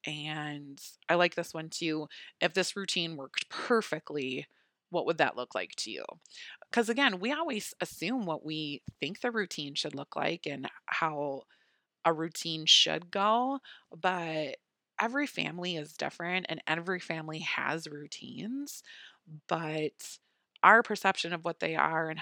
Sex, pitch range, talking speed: female, 155-185 Hz, 150 wpm